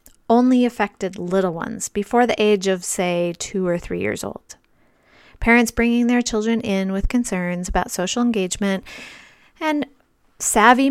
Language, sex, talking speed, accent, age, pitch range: English, female, 145 wpm, American, 30-49, 200-255 Hz